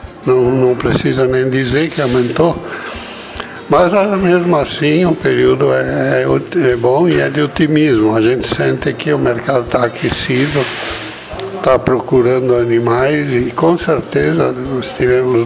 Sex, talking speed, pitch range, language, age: male, 135 wpm, 125-150 Hz, Portuguese, 60-79